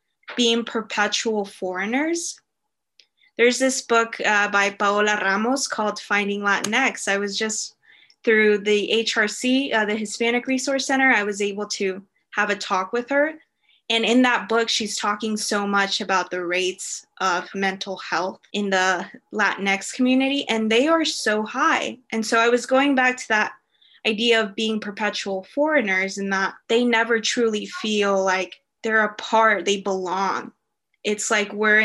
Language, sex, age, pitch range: English, female, 20-39, 205-240 Hz